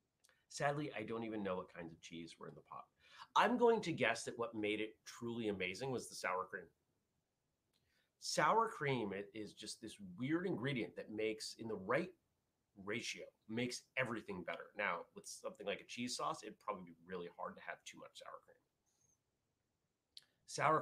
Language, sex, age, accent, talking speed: English, male, 30-49, American, 180 wpm